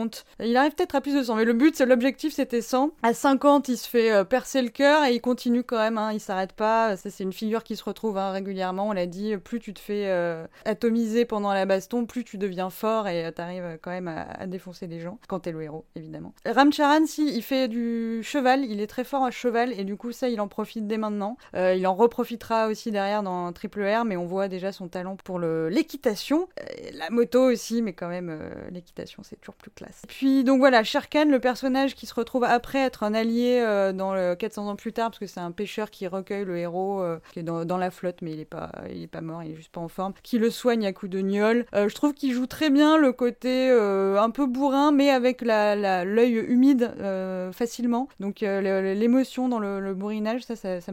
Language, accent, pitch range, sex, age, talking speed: French, French, 195-245 Hz, female, 20-39, 250 wpm